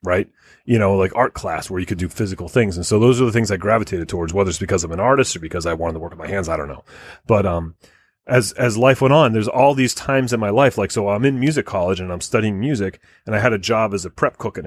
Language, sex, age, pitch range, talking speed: English, male, 30-49, 90-120 Hz, 300 wpm